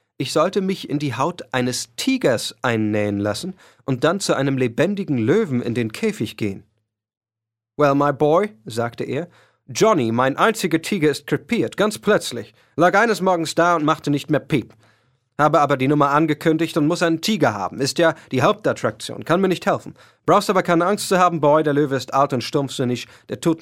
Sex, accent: male, German